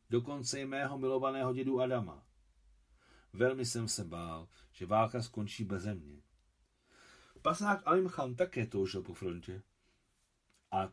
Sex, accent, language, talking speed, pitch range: male, native, Czech, 120 wpm, 95-125 Hz